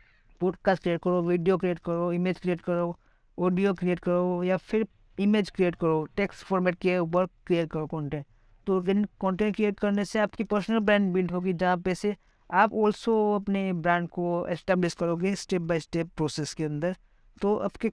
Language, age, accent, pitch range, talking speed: Hindi, 50-69, native, 175-200 Hz, 175 wpm